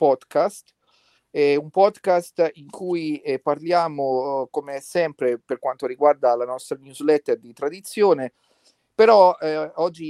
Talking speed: 130 wpm